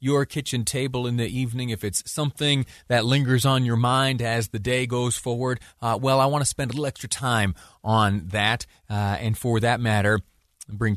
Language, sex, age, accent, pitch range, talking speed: English, male, 30-49, American, 105-135 Hz, 200 wpm